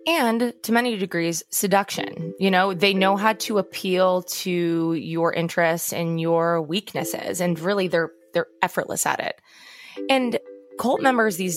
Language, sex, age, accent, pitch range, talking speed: English, female, 20-39, American, 170-200 Hz, 150 wpm